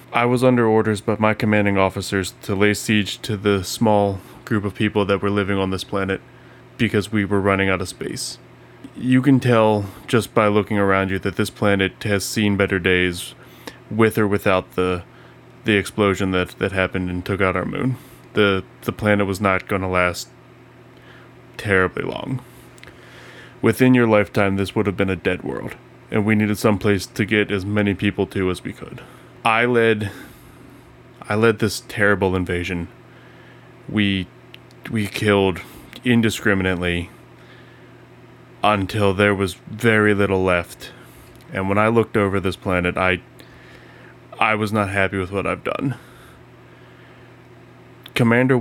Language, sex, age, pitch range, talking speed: English, male, 20-39, 95-120 Hz, 155 wpm